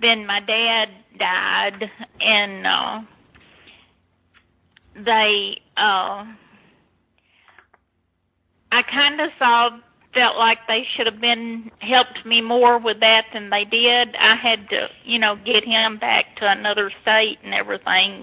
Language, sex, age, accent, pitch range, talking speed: English, female, 40-59, American, 190-225 Hz, 125 wpm